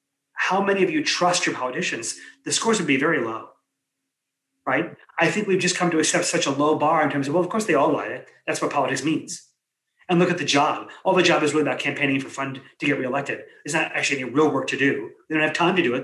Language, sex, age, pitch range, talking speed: English, male, 30-49, 140-180 Hz, 265 wpm